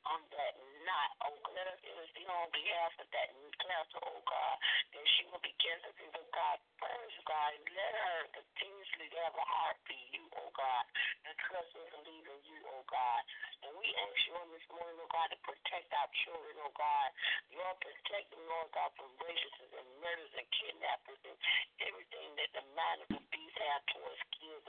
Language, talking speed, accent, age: English, 200 wpm, American, 50-69